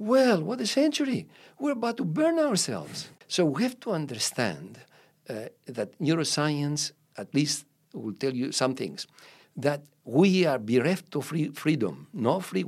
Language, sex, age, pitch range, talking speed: English, male, 60-79, 145-205 Hz, 155 wpm